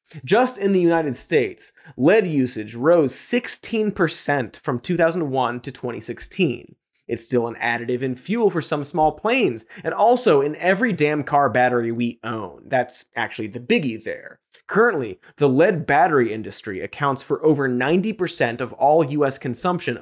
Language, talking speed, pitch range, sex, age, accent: English, 150 wpm, 130-185 Hz, male, 30-49, American